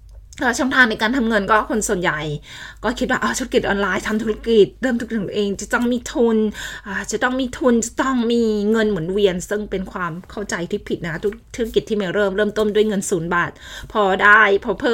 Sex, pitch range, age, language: female, 185-225 Hz, 20-39, Thai